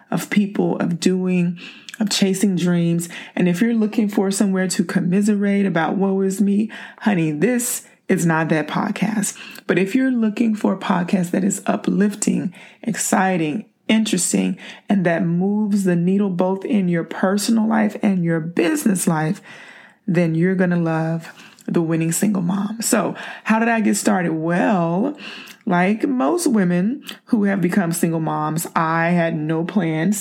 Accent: American